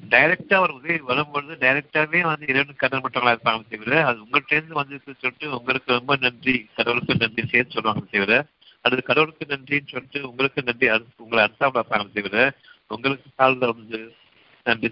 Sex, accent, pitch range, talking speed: male, native, 110-145 Hz, 135 wpm